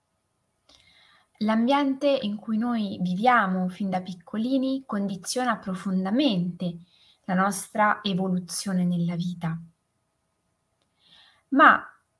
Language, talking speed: Italian, 80 wpm